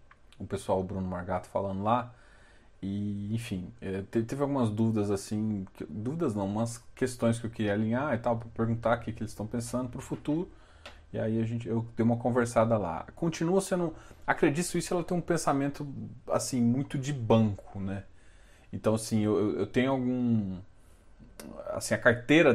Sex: male